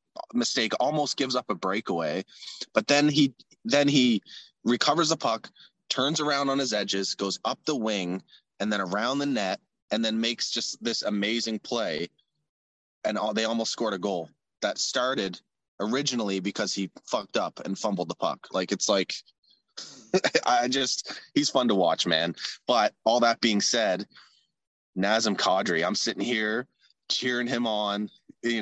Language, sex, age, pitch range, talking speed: English, male, 20-39, 95-115 Hz, 160 wpm